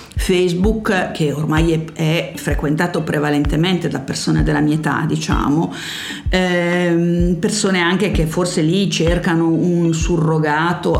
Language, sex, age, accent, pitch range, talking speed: Italian, female, 50-69, native, 155-190 Hz, 120 wpm